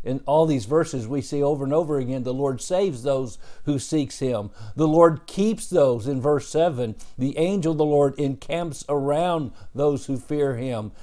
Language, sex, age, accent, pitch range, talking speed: English, male, 50-69, American, 130-165 Hz, 190 wpm